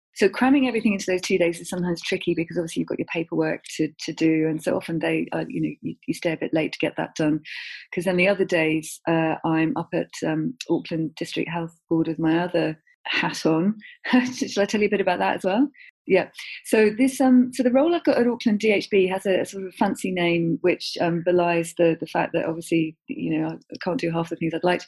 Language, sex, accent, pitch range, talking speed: English, female, British, 160-190 Hz, 250 wpm